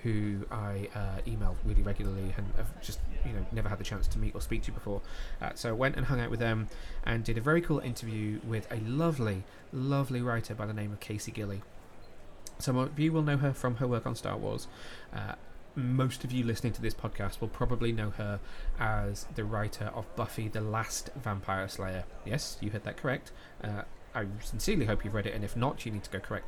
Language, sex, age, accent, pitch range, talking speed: English, male, 20-39, British, 105-120 Hz, 225 wpm